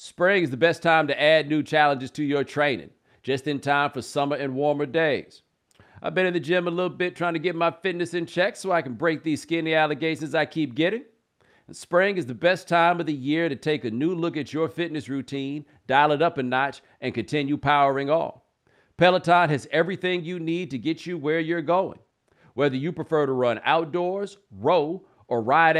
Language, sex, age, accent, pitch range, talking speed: English, male, 50-69, American, 145-170 Hz, 210 wpm